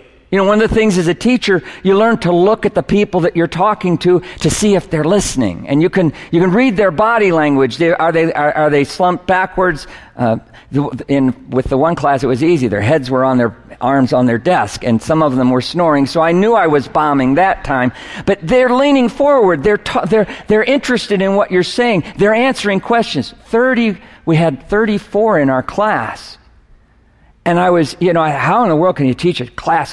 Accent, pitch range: American, 150-210 Hz